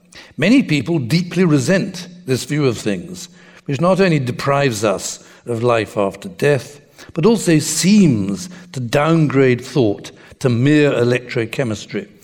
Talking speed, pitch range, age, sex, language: 130 wpm, 130-175 Hz, 60-79, male, Danish